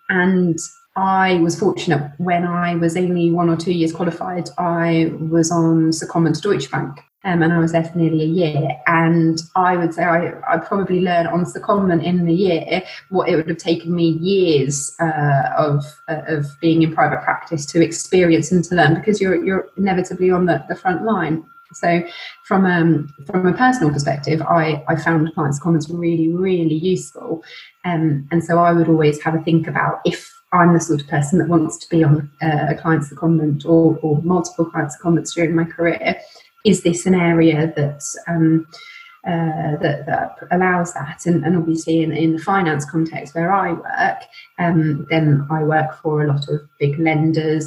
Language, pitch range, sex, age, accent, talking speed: English, 160-180 Hz, female, 20-39, British, 190 wpm